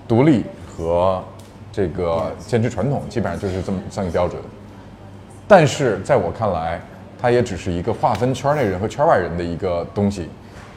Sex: male